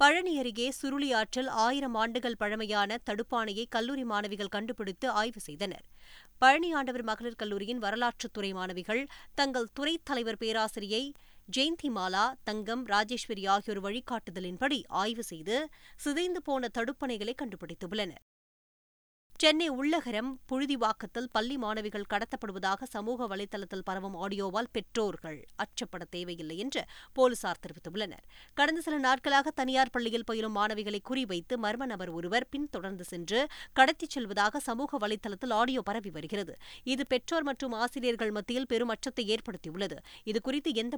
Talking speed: 115 wpm